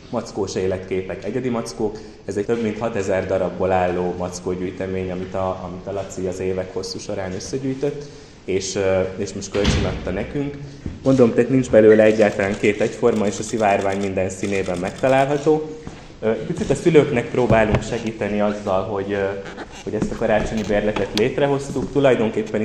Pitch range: 95-115 Hz